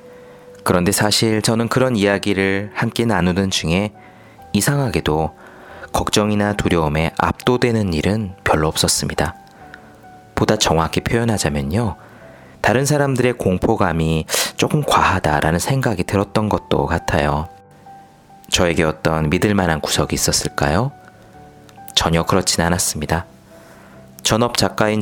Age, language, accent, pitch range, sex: 30-49, Korean, native, 80-115 Hz, male